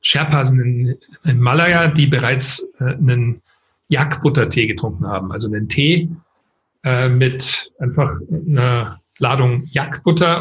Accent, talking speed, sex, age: German, 110 wpm, male, 40-59